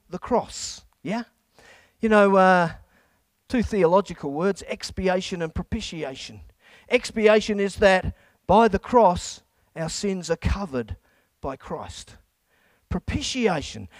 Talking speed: 105 wpm